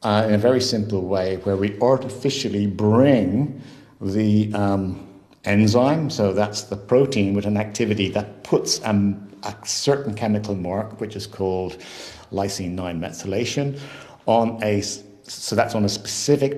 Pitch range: 95-110 Hz